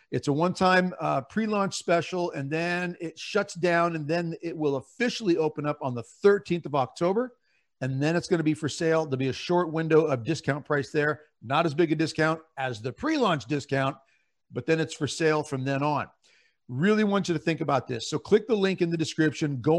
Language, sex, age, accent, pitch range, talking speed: English, male, 50-69, American, 135-170 Hz, 220 wpm